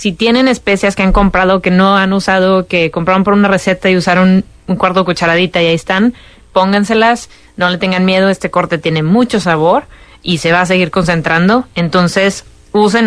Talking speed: 195 wpm